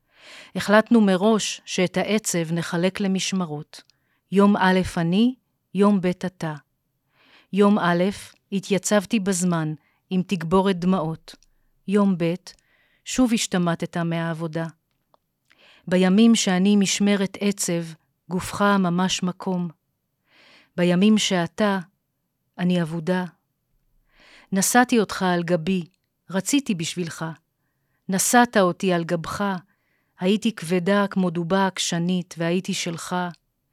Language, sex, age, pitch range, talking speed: Hebrew, female, 40-59, 170-205 Hz, 95 wpm